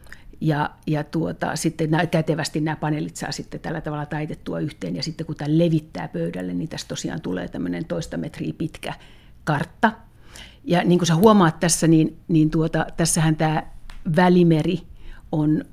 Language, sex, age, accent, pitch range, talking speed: Finnish, female, 60-79, native, 155-170 Hz, 155 wpm